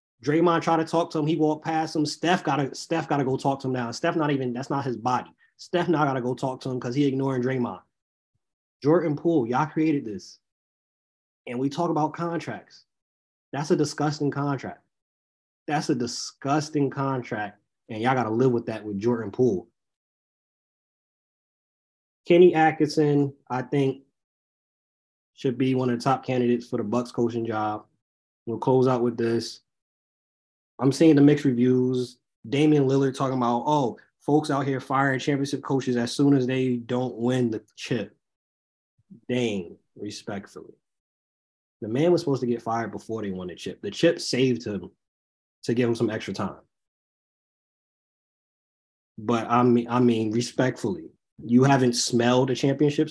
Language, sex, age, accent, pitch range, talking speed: English, male, 20-39, American, 115-140 Hz, 165 wpm